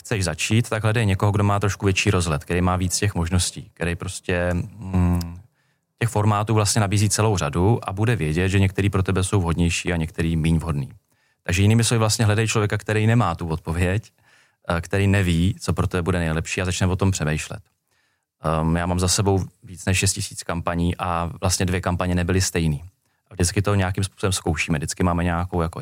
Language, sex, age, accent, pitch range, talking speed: Czech, male, 30-49, native, 85-105 Hz, 190 wpm